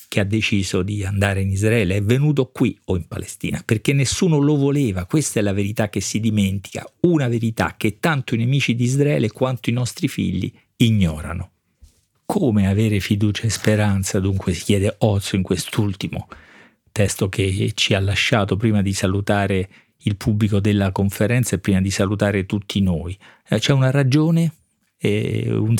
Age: 40-59